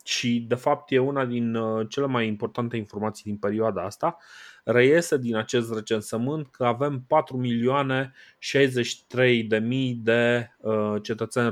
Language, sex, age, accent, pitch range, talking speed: Romanian, male, 20-39, native, 110-130 Hz, 115 wpm